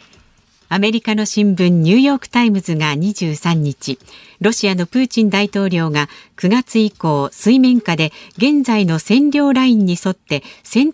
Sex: female